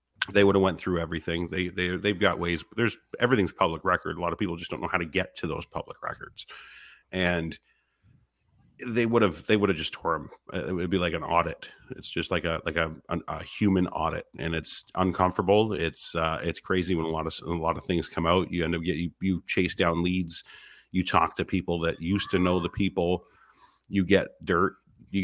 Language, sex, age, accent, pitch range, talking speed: English, male, 40-59, American, 85-95 Hz, 225 wpm